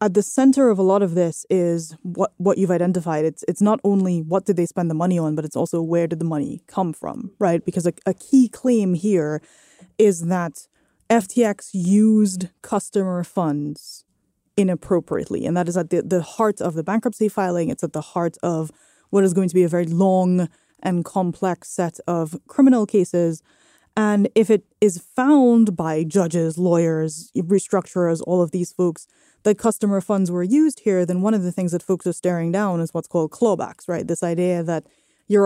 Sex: female